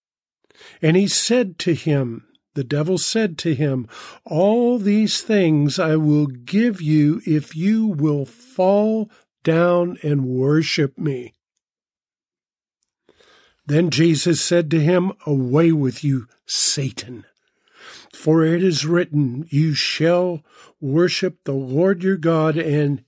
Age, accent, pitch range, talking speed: 50-69, American, 145-195 Hz, 120 wpm